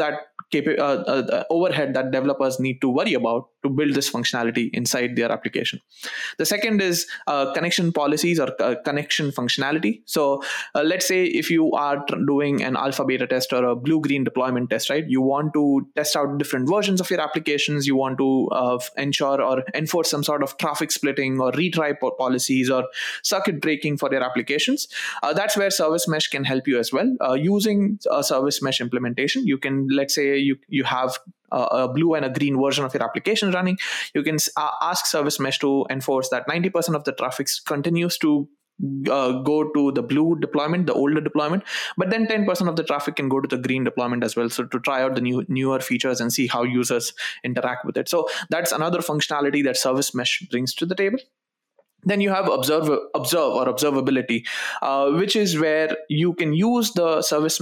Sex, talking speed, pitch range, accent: male, 200 wpm, 130-165 Hz, Indian